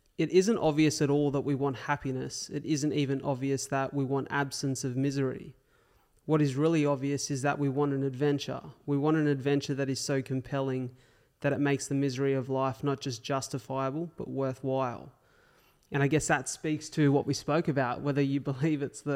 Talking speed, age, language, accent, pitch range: 200 wpm, 20-39, English, Australian, 135-150 Hz